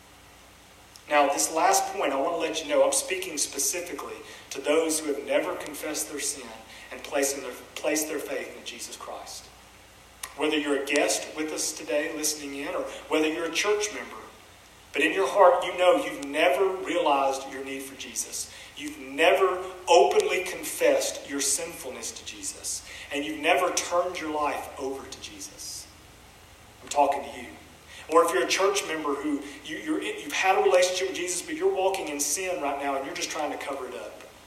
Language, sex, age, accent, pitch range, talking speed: English, male, 40-59, American, 140-180 Hz, 190 wpm